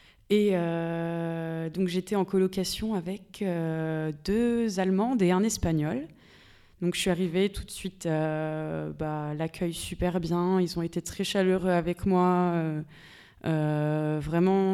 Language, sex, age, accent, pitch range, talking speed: French, female, 20-39, French, 170-200 Hz, 140 wpm